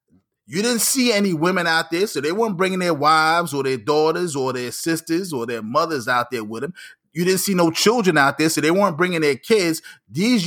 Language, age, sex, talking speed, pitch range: English, 30-49, male, 230 wpm, 150-200 Hz